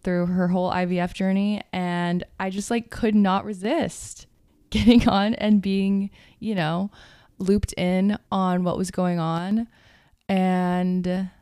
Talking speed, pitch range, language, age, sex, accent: 135 wpm, 170-200 Hz, English, 20-39, female, American